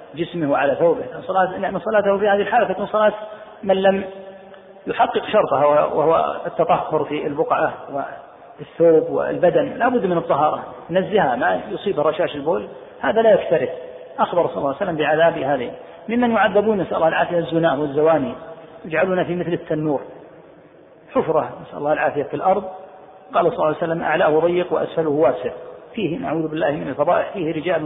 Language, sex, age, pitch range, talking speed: Arabic, male, 40-59, 160-195 Hz, 160 wpm